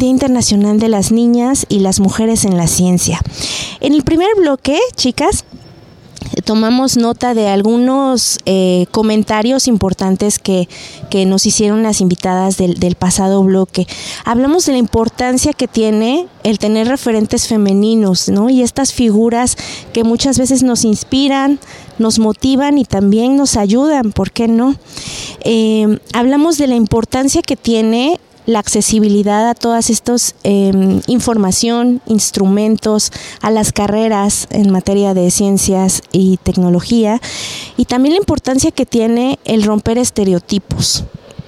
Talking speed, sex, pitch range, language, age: 135 wpm, female, 195-250 Hz, Spanish, 20-39